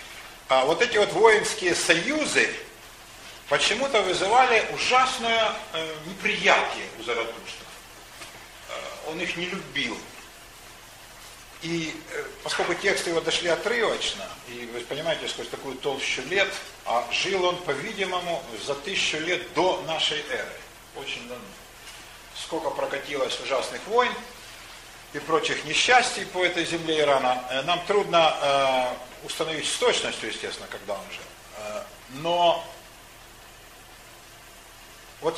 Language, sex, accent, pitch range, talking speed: Russian, male, native, 160-235 Hz, 105 wpm